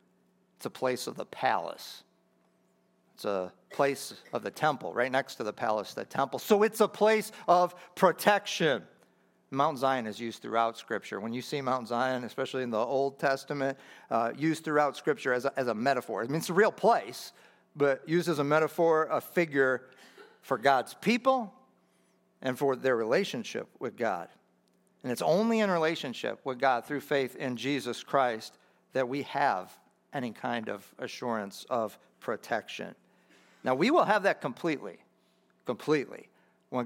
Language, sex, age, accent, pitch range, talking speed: English, male, 50-69, American, 125-170 Hz, 165 wpm